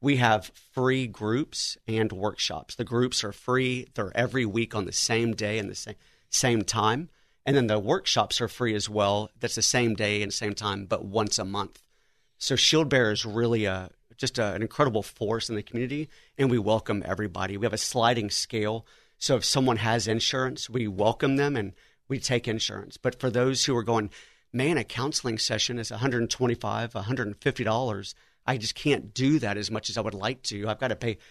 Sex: male